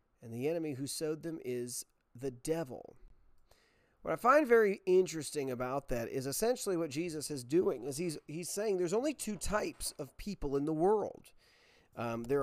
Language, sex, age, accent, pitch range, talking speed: English, male, 40-59, American, 130-165 Hz, 180 wpm